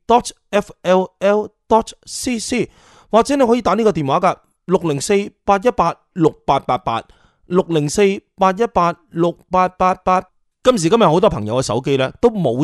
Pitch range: 150-215 Hz